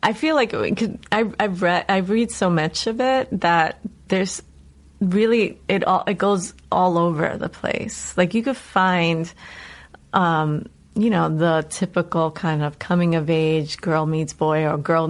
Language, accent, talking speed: English, American, 165 wpm